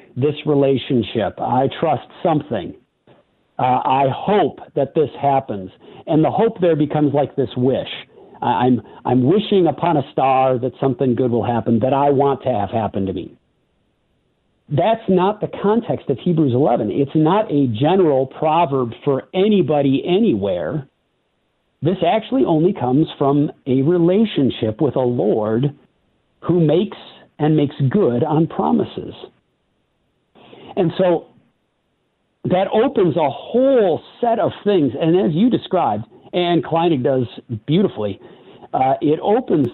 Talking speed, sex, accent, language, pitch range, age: 135 wpm, male, American, English, 130-180 Hz, 50-69